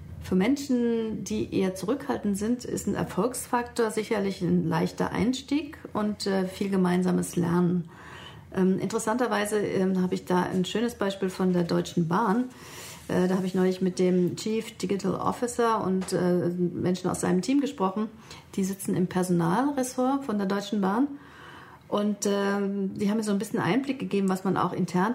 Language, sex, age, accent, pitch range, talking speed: German, female, 40-59, German, 175-210 Hz, 155 wpm